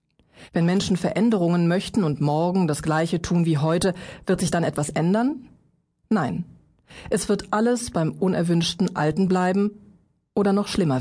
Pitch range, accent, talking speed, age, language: 165-215 Hz, German, 145 wpm, 40-59, German